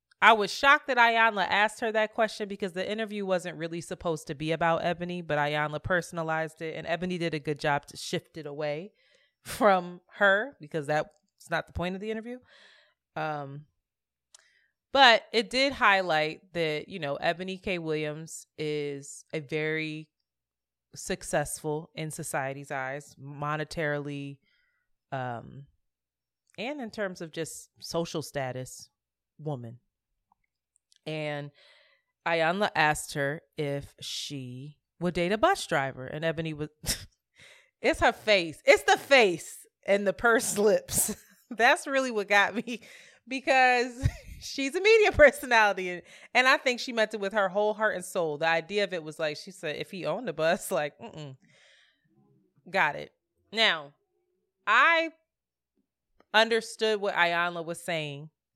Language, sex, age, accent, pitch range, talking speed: English, female, 20-39, American, 150-215 Hz, 145 wpm